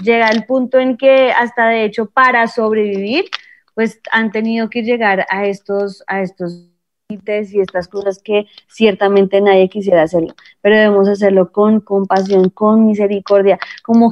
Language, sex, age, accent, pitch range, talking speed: Spanish, female, 20-39, Colombian, 210-270 Hz, 155 wpm